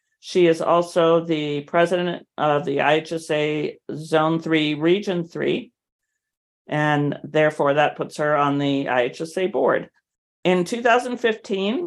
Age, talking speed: 50-69, 115 wpm